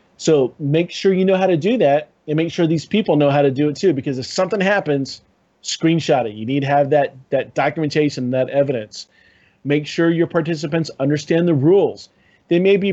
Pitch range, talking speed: 140-170 Hz, 210 wpm